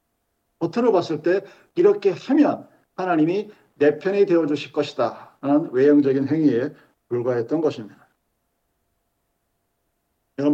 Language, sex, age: Korean, male, 50-69